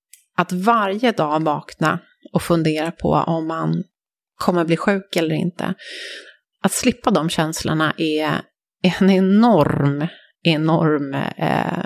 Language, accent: English, Swedish